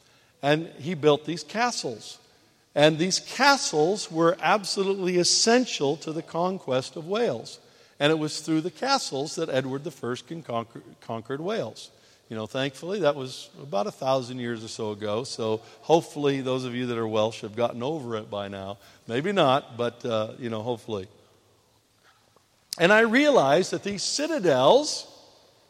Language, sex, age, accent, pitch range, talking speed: English, male, 50-69, American, 135-180 Hz, 160 wpm